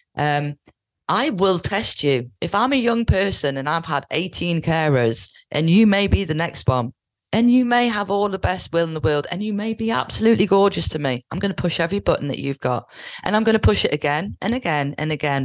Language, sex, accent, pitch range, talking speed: English, female, British, 135-185 Hz, 235 wpm